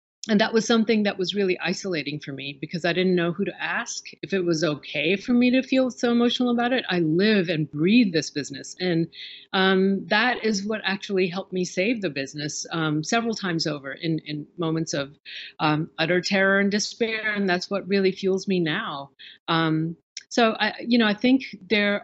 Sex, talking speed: female, 195 wpm